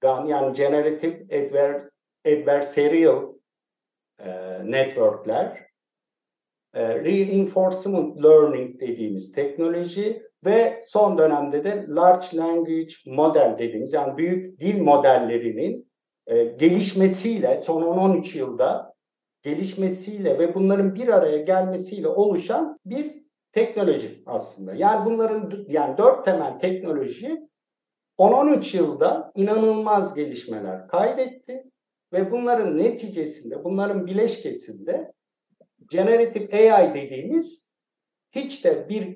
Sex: male